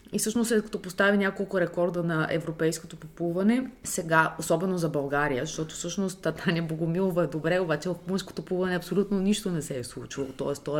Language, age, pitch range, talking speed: Bulgarian, 20-39, 160-200 Hz, 180 wpm